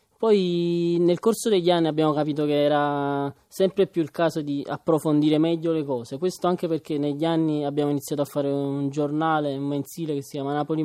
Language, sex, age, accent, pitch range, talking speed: Italian, male, 20-39, native, 145-170 Hz, 195 wpm